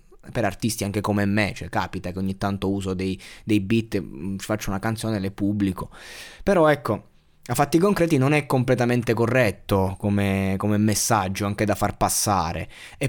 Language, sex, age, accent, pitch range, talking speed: Italian, male, 20-39, native, 100-125 Hz, 175 wpm